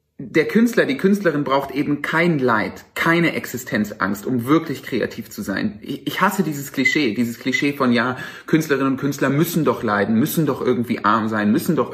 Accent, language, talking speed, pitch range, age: German, German, 180 wpm, 130-180 Hz, 30-49